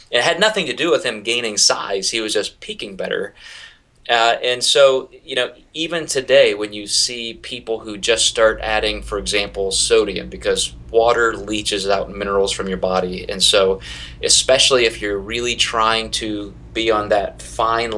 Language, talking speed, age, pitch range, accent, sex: English, 175 wpm, 30-49, 100-125 Hz, American, male